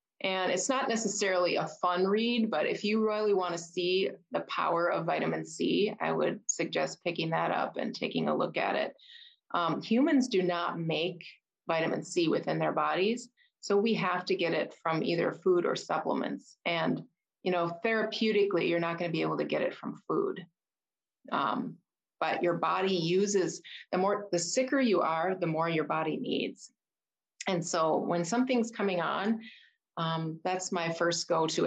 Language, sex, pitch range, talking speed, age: English, female, 170-210 Hz, 180 wpm, 30-49